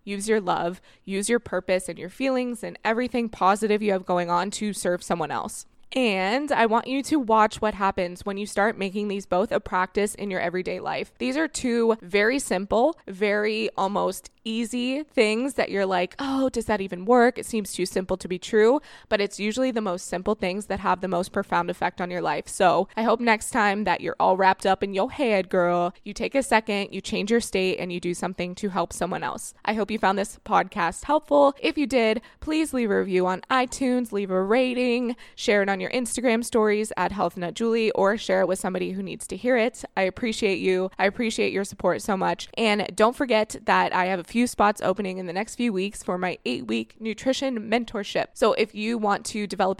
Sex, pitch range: female, 185-230 Hz